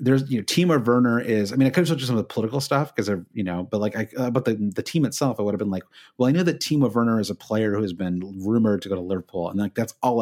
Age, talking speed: 30-49, 335 wpm